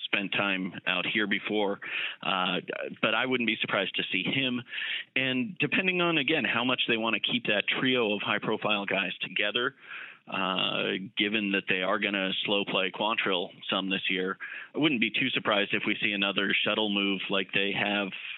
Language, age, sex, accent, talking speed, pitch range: English, 30-49, male, American, 185 wpm, 95-105 Hz